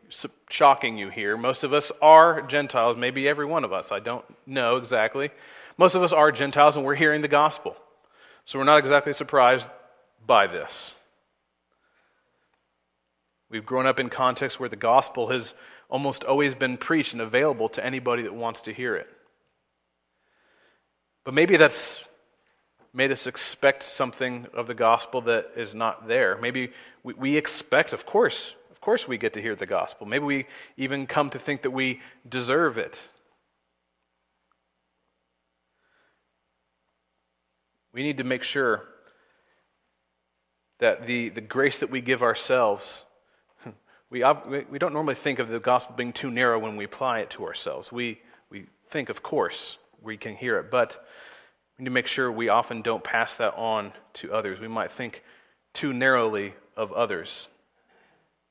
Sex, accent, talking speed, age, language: male, American, 155 wpm, 40-59, English